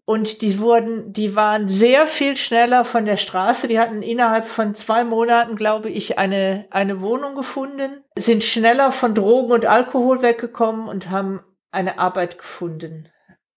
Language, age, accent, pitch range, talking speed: German, 50-69, German, 185-220 Hz, 155 wpm